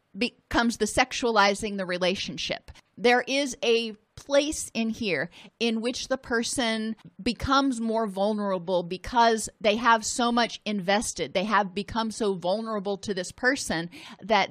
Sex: female